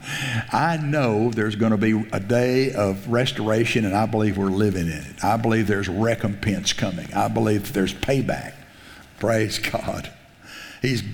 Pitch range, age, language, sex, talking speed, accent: 105-130 Hz, 60-79, English, male, 155 wpm, American